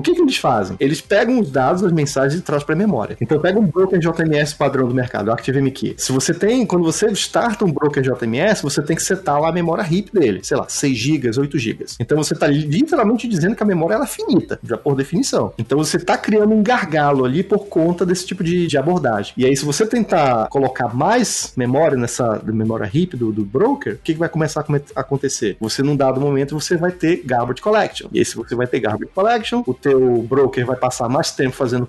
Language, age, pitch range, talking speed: Portuguese, 30-49, 130-185 Hz, 235 wpm